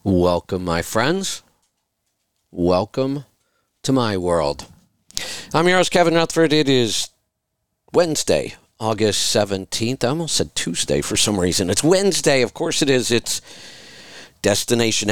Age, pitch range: 50-69, 95-130 Hz